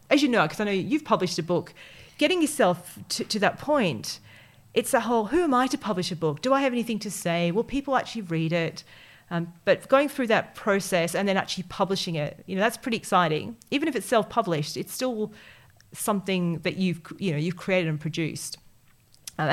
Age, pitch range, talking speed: 40-59, 165-230 Hz, 210 wpm